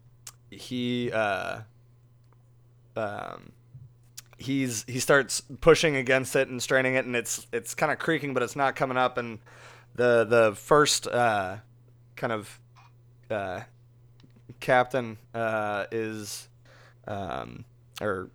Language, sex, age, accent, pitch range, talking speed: English, male, 20-39, American, 115-130 Hz, 120 wpm